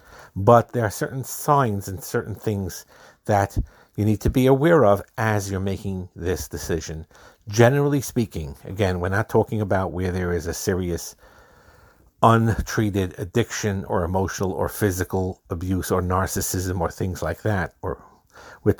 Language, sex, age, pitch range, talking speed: English, male, 50-69, 90-110 Hz, 150 wpm